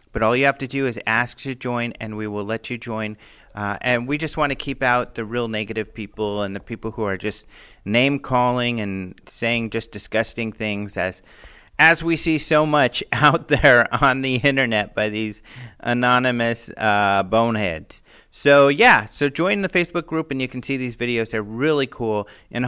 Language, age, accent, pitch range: English, 40-59, American, 110-145 Hz